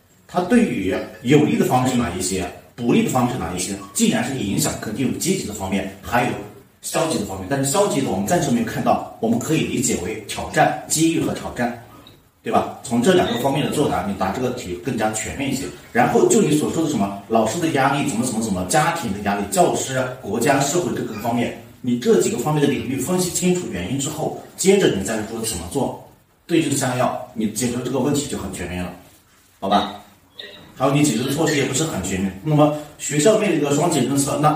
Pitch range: 105-150 Hz